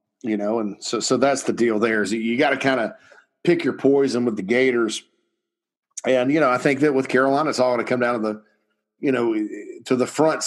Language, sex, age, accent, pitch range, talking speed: English, male, 40-59, American, 110-130 Hz, 240 wpm